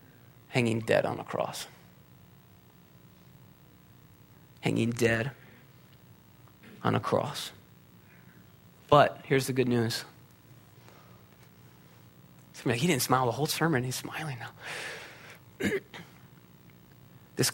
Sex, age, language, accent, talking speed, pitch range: male, 30-49, English, American, 85 wpm, 115-140 Hz